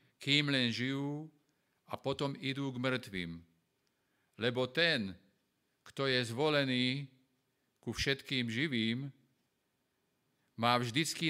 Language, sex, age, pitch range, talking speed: Slovak, male, 50-69, 115-140 Hz, 95 wpm